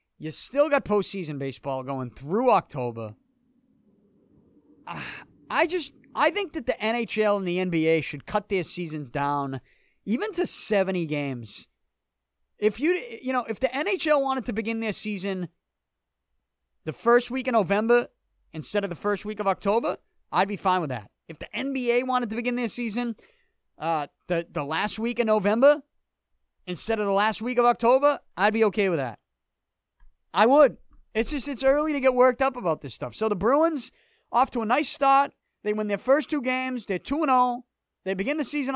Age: 30-49